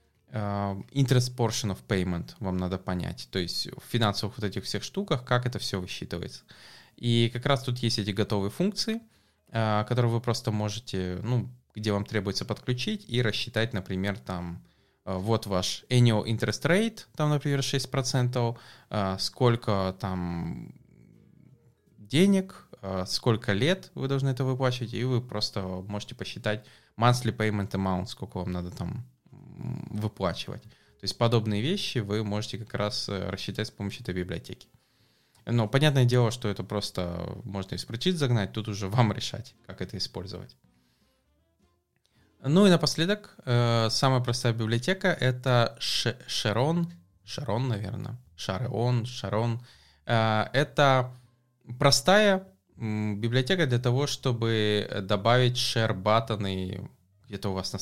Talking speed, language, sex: 130 wpm, English, male